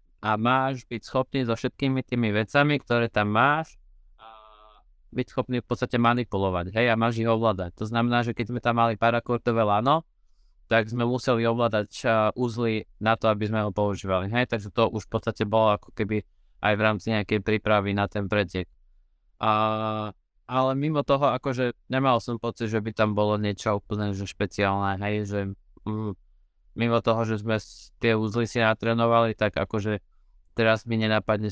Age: 20-39